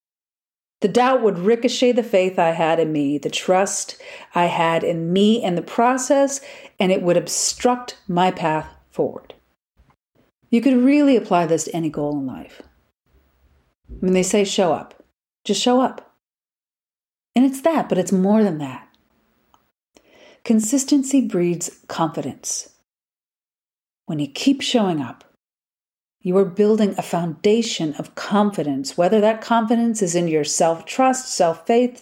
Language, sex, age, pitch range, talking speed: English, female, 40-59, 170-245 Hz, 145 wpm